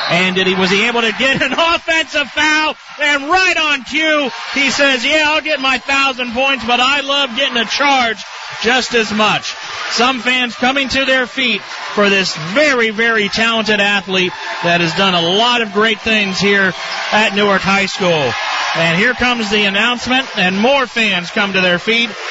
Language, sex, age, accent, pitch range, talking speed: English, male, 40-59, American, 170-235 Hz, 185 wpm